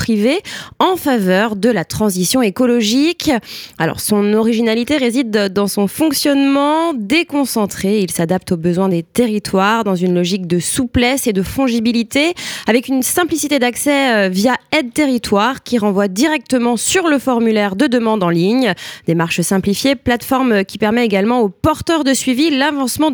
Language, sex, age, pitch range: French, female, 20-39, 200-280 Hz